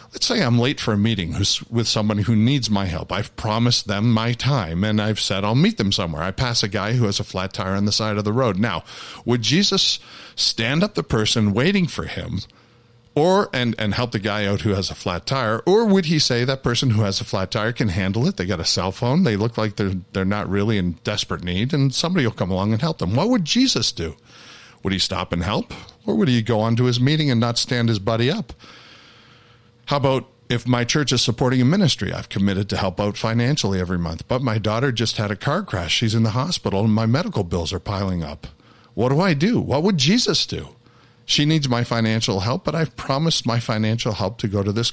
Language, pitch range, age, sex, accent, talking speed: English, 105-130 Hz, 50-69, male, American, 240 wpm